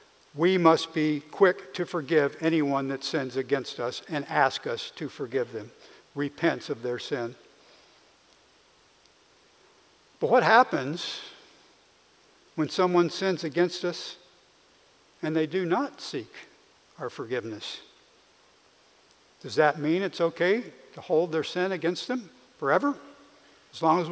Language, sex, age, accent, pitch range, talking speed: English, male, 60-79, American, 160-255 Hz, 125 wpm